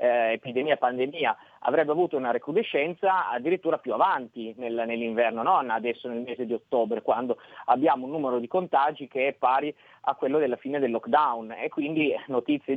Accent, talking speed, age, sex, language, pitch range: native, 170 wpm, 30-49, male, Italian, 120-160 Hz